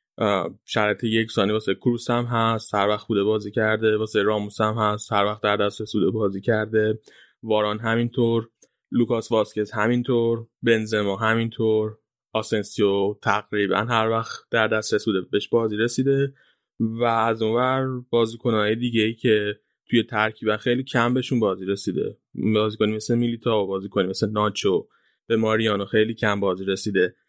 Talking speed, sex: 145 wpm, male